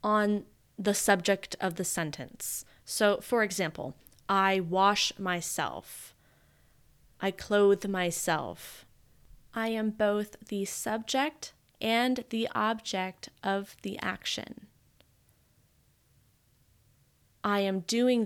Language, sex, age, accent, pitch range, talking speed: English, female, 20-39, American, 185-220 Hz, 95 wpm